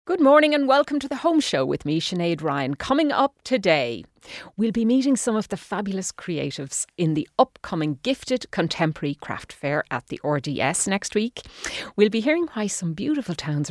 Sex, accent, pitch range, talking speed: female, Irish, 145-210 Hz, 185 wpm